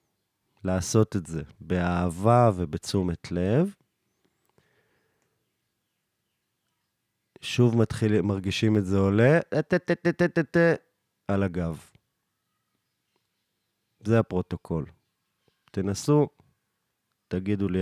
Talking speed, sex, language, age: 65 wpm, male, Hebrew, 30-49